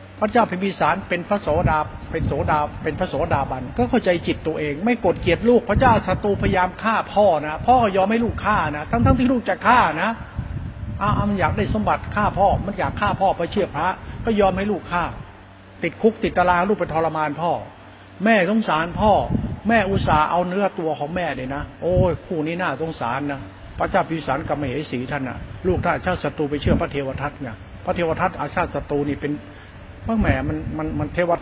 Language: Thai